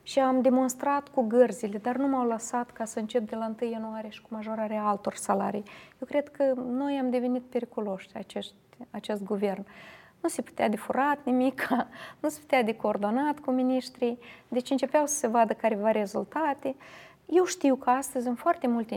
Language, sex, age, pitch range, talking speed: Romanian, female, 20-39, 215-260 Hz, 180 wpm